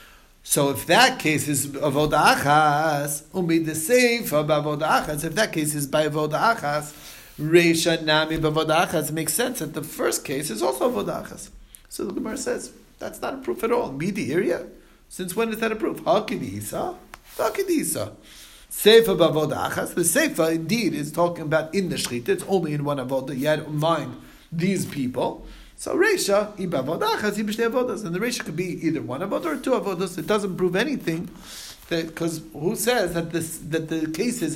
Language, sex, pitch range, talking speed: English, male, 155-195 Hz, 165 wpm